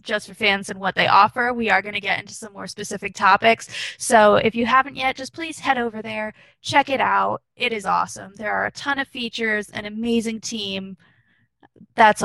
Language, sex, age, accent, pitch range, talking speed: English, female, 10-29, American, 200-250 Hz, 210 wpm